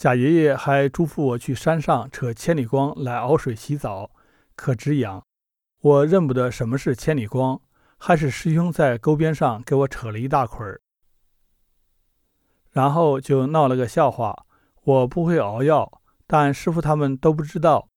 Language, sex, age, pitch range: Chinese, male, 50-69, 125-155 Hz